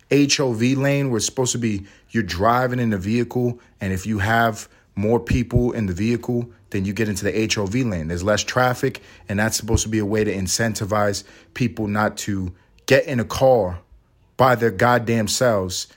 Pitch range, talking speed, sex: 100-125 Hz, 190 wpm, male